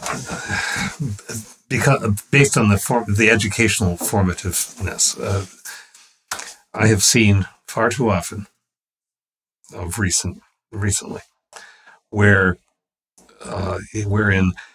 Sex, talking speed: male, 90 wpm